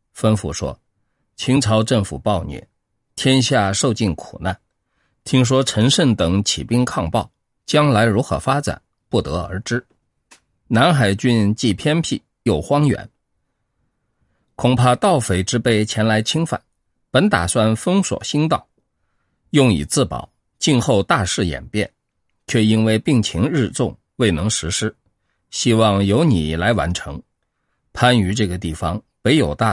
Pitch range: 100-130 Hz